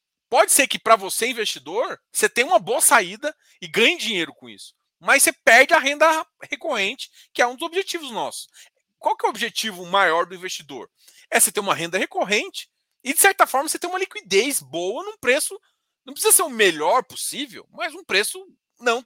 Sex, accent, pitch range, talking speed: male, Brazilian, 215-335 Hz, 200 wpm